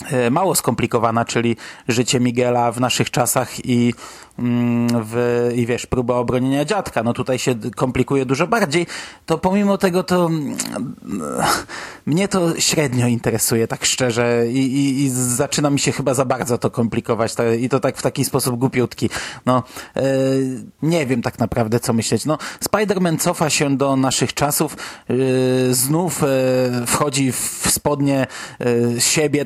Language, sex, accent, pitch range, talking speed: Polish, male, native, 125-155 Hz, 135 wpm